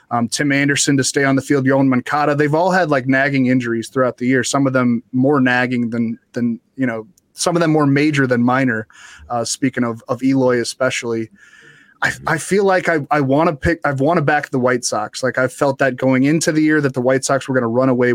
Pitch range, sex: 130-150 Hz, male